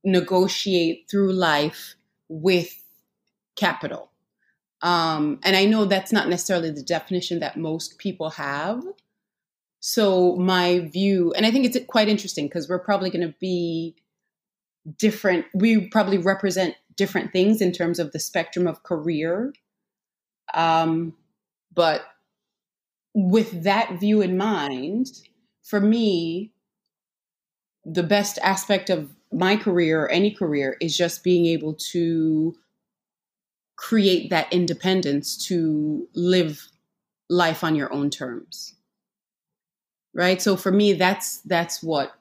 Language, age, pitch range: English, 30-49, 165-205 Hz